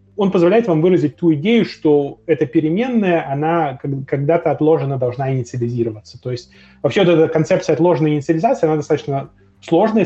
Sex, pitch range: male, 120-165 Hz